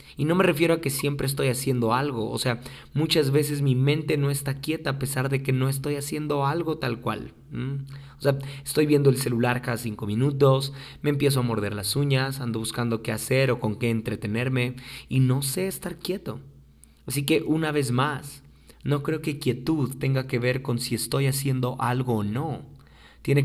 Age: 30-49